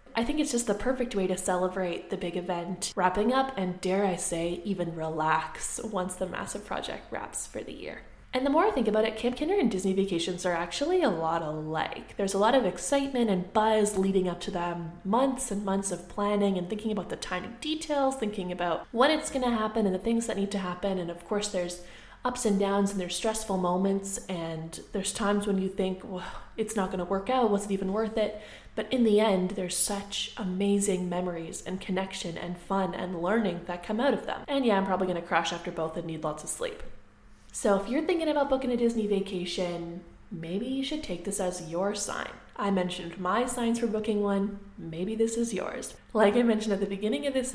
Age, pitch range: 20-39, 180-225 Hz